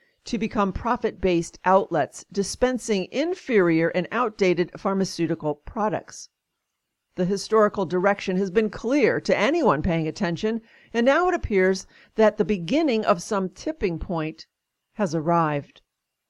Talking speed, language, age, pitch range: 120 wpm, English, 50-69, 185-230 Hz